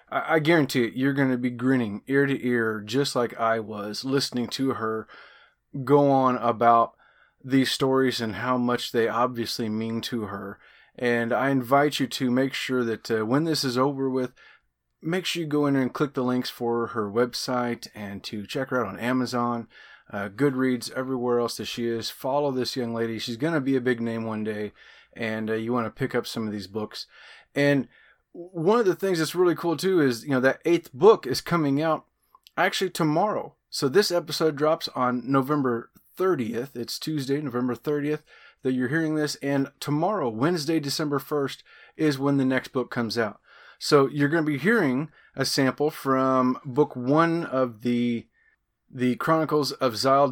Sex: male